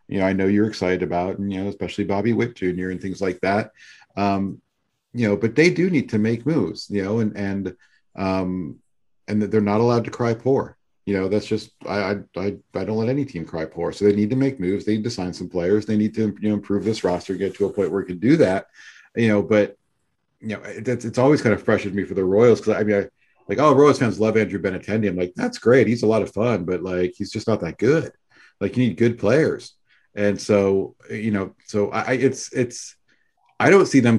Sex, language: male, English